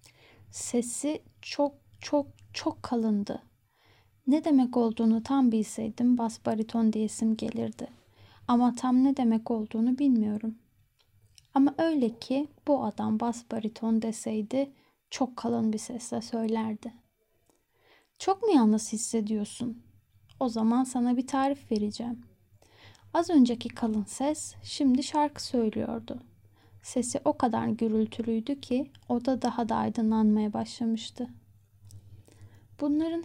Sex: female